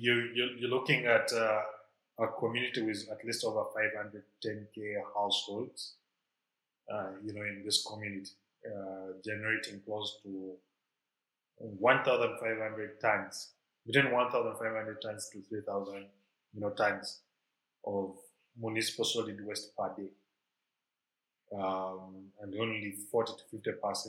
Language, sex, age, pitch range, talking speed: English, male, 30-49, 100-110 Hz, 110 wpm